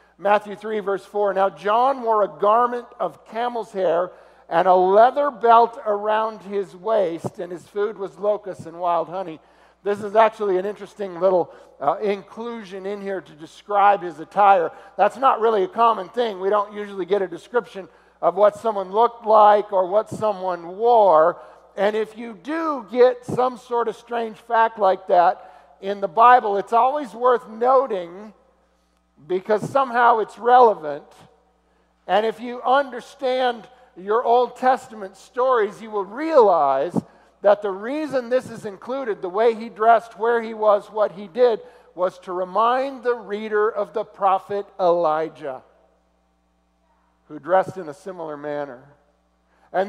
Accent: American